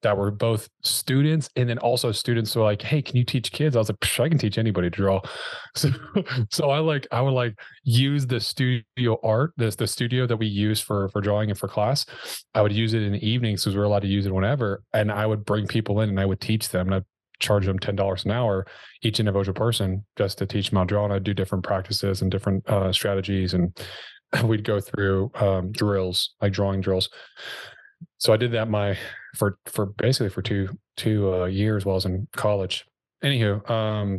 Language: English